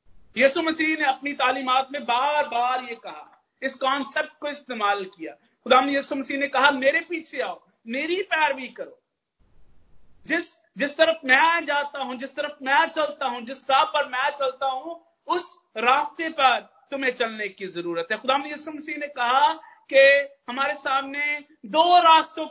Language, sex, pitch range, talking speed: Hindi, male, 230-295 Hz, 165 wpm